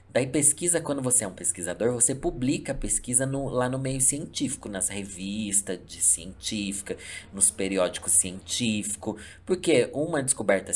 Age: 20-39